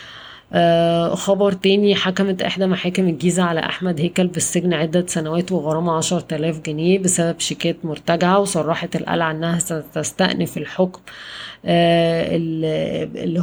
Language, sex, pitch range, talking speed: Arabic, female, 160-180 Hz, 120 wpm